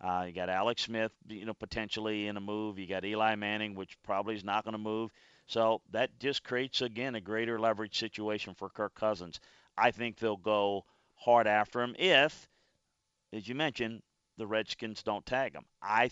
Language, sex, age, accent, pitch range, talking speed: English, male, 40-59, American, 105-120 Hz, 190 wpm